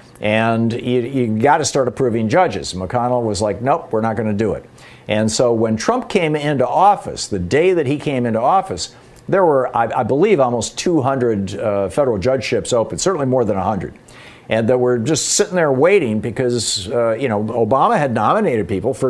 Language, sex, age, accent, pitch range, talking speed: English, male, 50-69, American, 110-140 Hz, 200 wpm